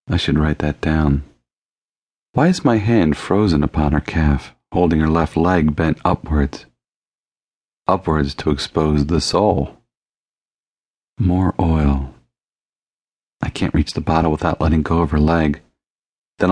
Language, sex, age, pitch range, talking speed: English, male, 40-59, 75-90 Hz, 140 wpm